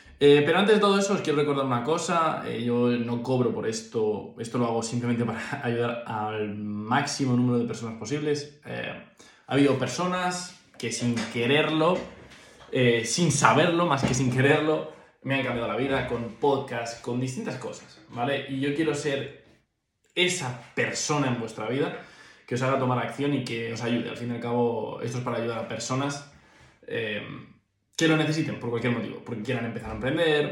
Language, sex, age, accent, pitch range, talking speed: Spanish, male, 20-39, Spanish, 115-140 Hz, 185 wpm